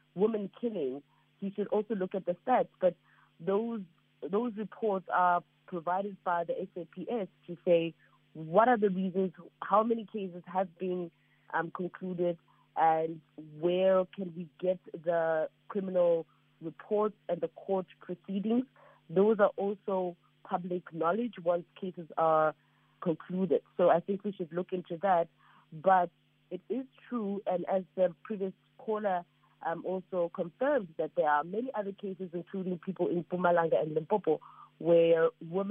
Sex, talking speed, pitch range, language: female, 145 wpm, 165-195 Hz, English